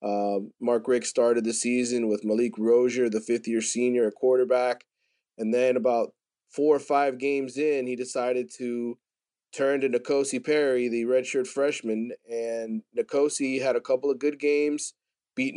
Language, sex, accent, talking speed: English, male, American, 160 wpm